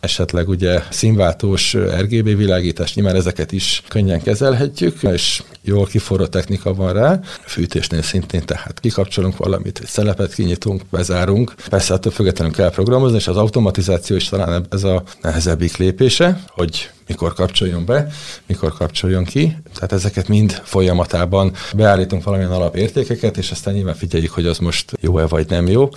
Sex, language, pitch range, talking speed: male, Hungarian, 90-100 Hz, 150 wpm